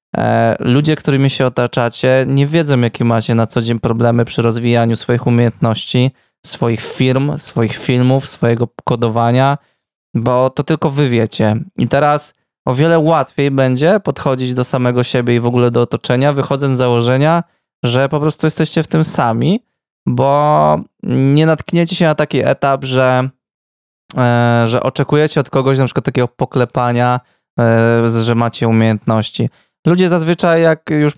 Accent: native